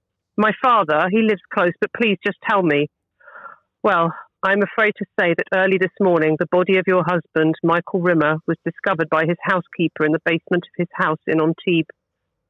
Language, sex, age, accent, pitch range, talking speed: English, female, 40-59, British, 160-195 Hz, 185 wpm